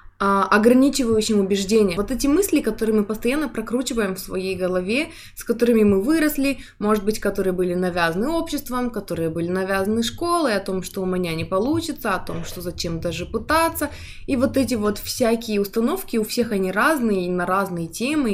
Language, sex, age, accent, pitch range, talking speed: Russian, female, 20-39, native, 195-240 Hz, 175 wpm